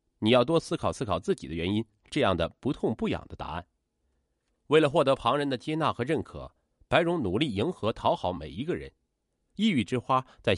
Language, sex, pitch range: Chinese, male, 95-145 Hz